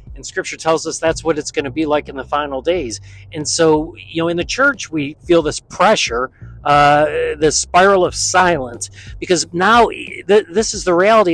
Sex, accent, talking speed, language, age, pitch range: male, American, 200 wpm, English, 40-59, 135-180 Hz